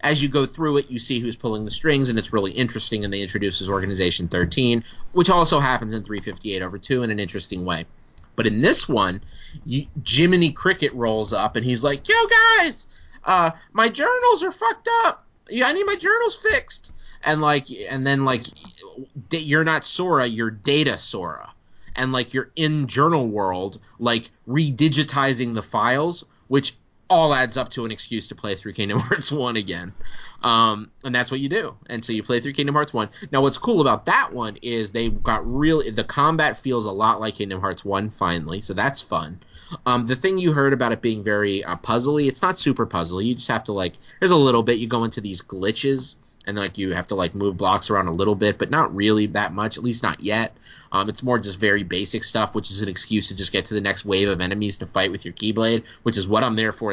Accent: American